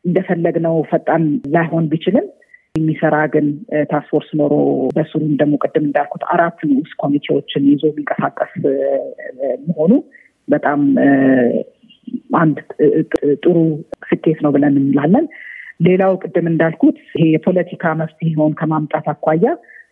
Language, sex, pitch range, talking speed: Amharic, female, 150-185 Hz, 100 wpm